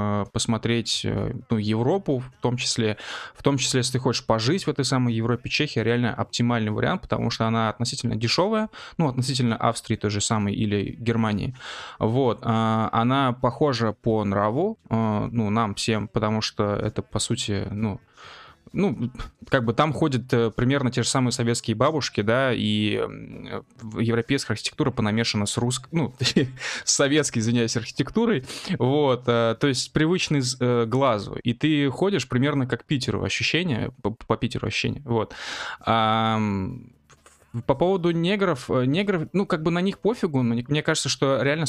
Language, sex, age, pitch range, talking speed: Russian, male, 20-39, 110-135 Hz, 155 wpm